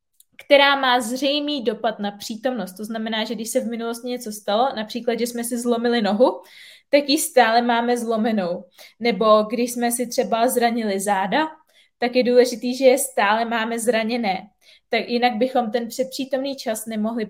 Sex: female